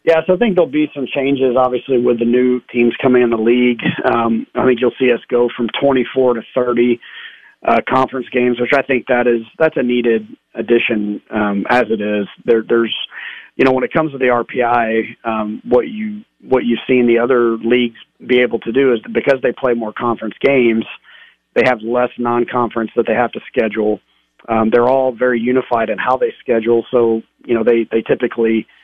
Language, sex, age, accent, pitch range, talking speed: English, male, 40-59, American, 115-130 Hz, 205 wpm